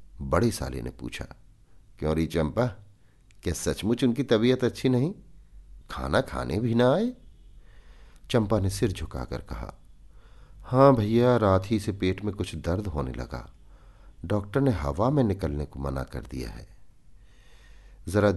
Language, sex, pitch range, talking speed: Hindi, male, 80-110 Hz, 145 wpm